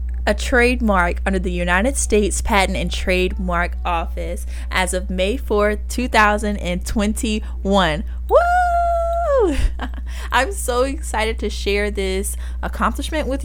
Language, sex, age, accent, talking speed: English, female, 20-39, American, 105 wpm